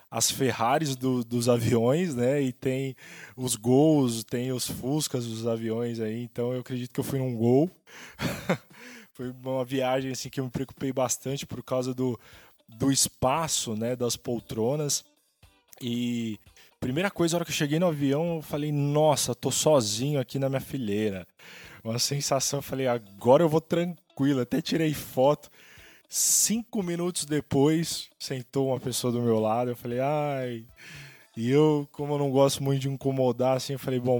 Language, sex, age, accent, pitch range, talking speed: Portuguese, male, 20-39, Brazilian, 120-140 Hz, 170 wpm